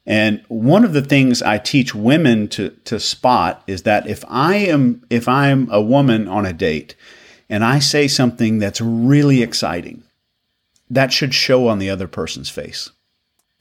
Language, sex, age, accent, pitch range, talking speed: English, male, 40-59, American, 105-130 Hz, 170 wpm